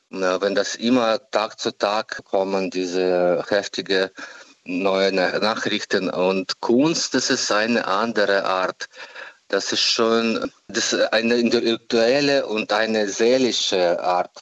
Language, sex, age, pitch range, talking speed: German, male, 50-69, 95-115 Hz, 110 wpm